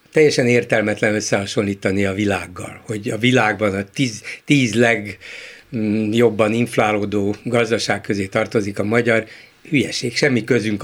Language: Hungarian